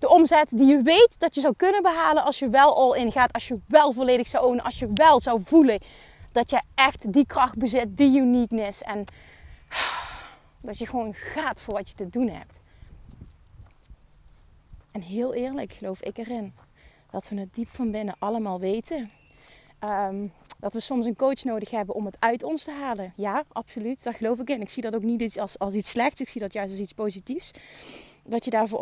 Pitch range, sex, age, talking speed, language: 205-255 Hz, female, 30-49, 205 wpm, Dutch